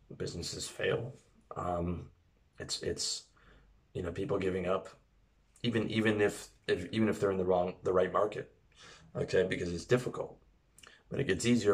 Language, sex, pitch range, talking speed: English, male, 90-110 Hz, 160 wpm